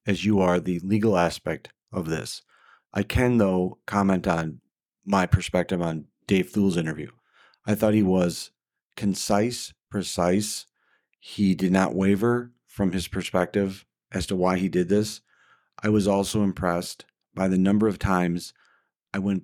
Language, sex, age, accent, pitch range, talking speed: English, male, 40-59, American, 90-105 Hz, 150 wpm